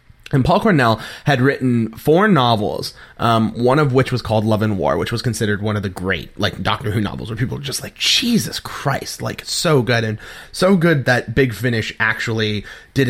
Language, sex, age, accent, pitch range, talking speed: English, male, 30-49, American, 105-135 Hz, 205 wpm